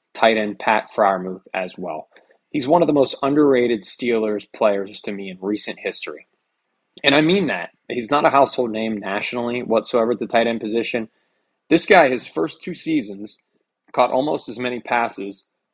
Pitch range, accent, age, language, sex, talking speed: 105-125 Hz, American, 20-39, English, male, 175 wpm